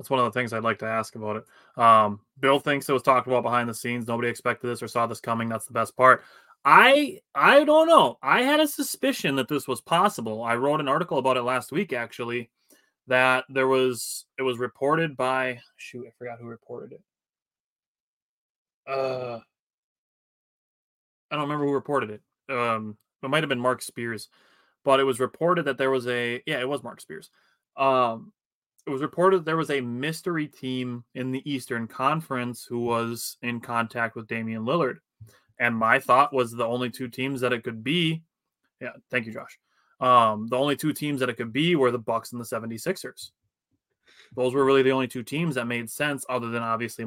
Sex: male